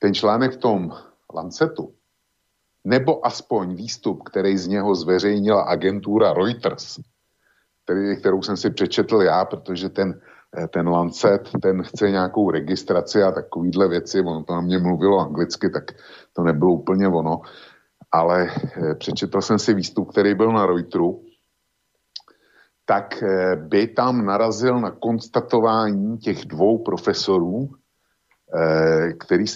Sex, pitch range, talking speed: male, 95-115 Hz, 125 wpm